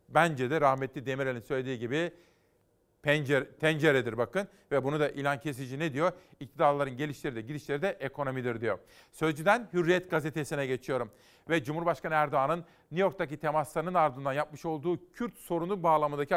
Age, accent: 40-59, native